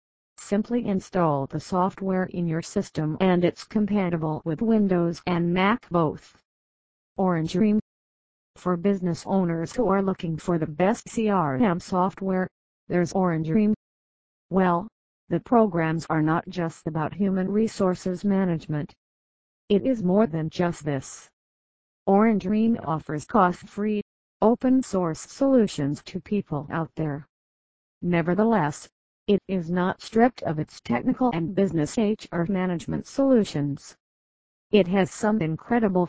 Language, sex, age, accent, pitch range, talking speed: English, female, 50-69, American, 155-200 Hz, 125 wpm